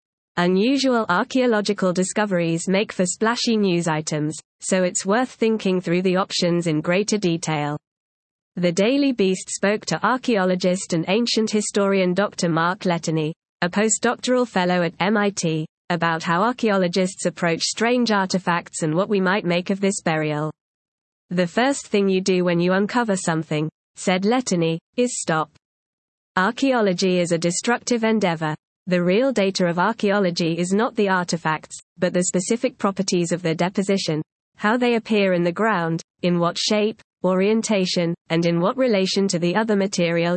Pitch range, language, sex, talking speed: 175-210 Hz, Italian, female, 150 wpm